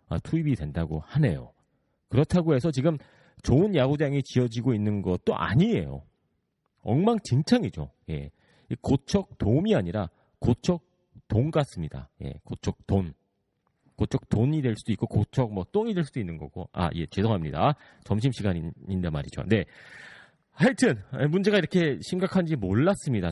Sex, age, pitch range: male, 40-59, 105-160 Hz